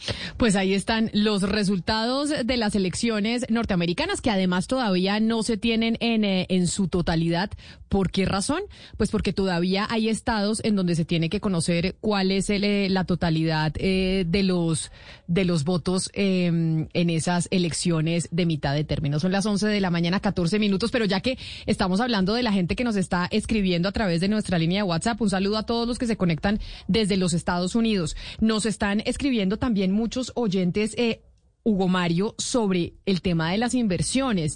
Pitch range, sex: 180-215 Hz, female